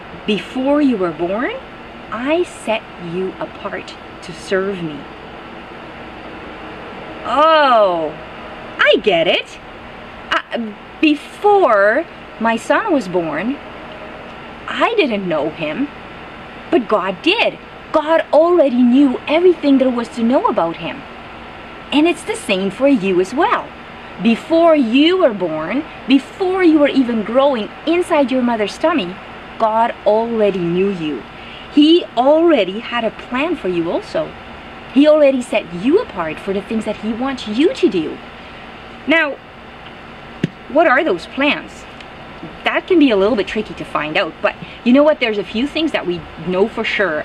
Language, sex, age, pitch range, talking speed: English, female, 30-49, 200-310 Hz, 145 wpm